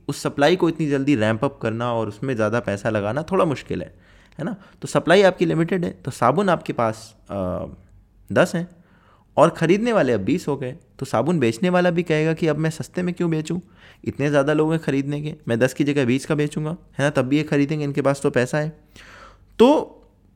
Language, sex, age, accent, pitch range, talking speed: Hindi, male, 20-39, native, 115-155 Hz, 220 wpm